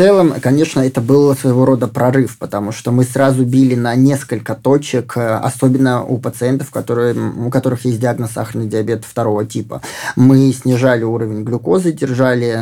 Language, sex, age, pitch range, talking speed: Russian, male, 20-39, 115-135 Hz, 155 wpm